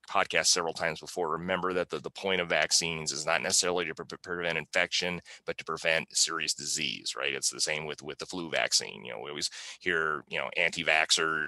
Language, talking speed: English, 210 wpm